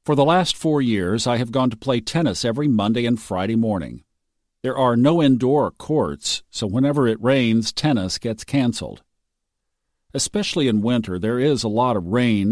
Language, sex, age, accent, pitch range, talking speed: English, male, 50-69, American, 110-140 Hz, 175 wpm